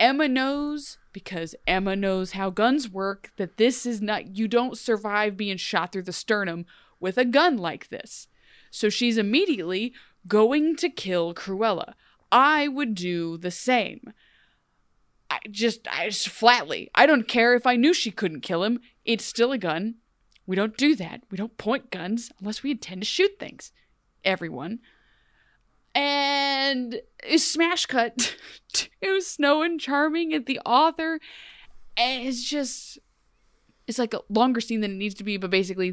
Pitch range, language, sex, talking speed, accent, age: 200-275 Hz, English, female, 160 wpm, American, 30-49